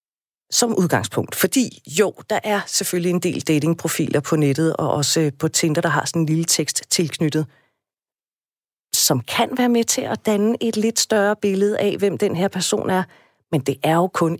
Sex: female